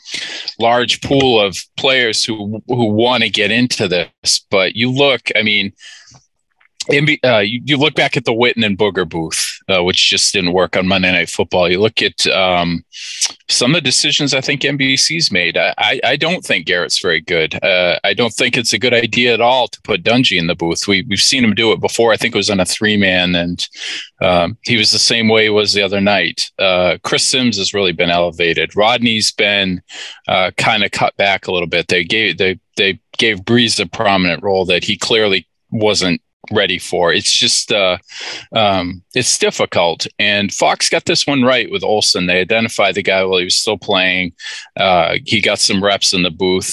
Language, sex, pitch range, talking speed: English, male, 95-120 Hz, 210 wpm